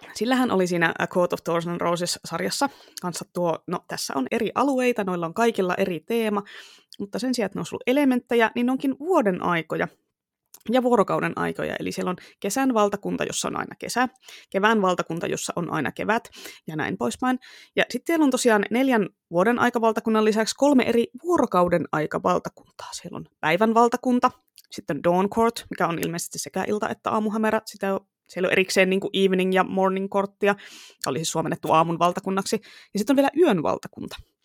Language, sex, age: Finnish, female, 20-39